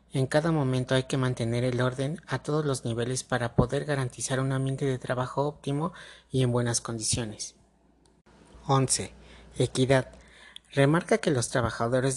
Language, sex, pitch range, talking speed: Spanish, male, 125-150 Hz, 150 wpm